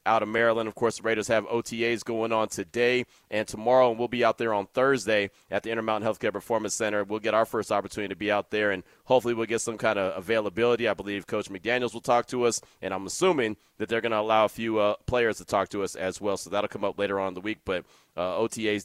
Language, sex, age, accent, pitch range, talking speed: English, male, 30-49, American, 105-125 Hz, 265 wpm